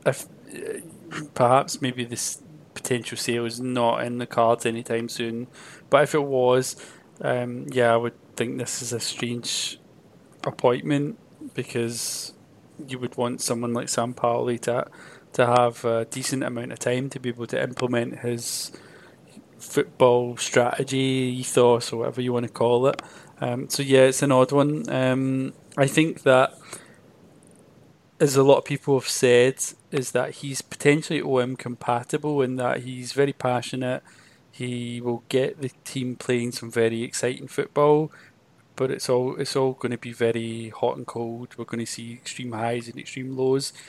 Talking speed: 165 wpm